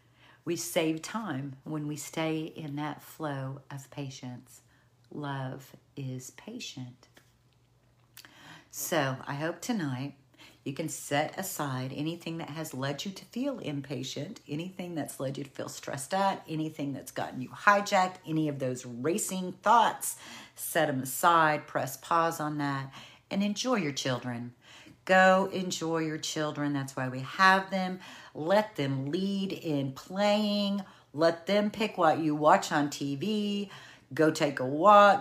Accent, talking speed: American, 145 wpm